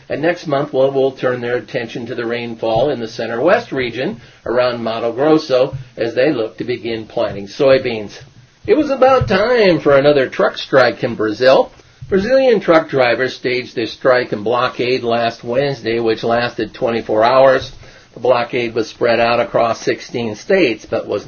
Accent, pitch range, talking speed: American, 120-155 Hz, 165 wpm